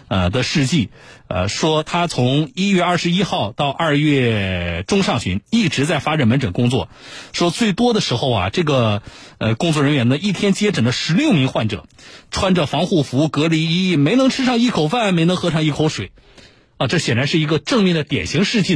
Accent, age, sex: native, 50-69, male